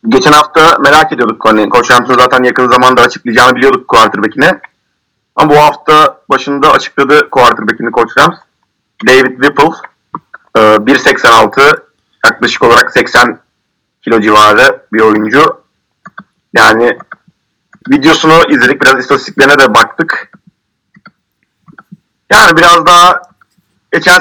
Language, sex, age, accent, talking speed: Turkish, male, 40-59, native, 105 wpm